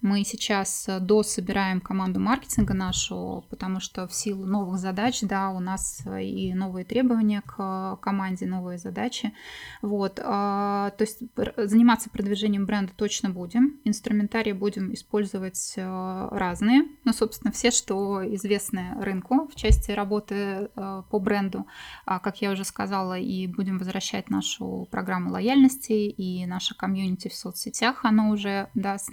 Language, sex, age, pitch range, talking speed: Russian, female, 20-39, 195-225 Hz, 130 wpm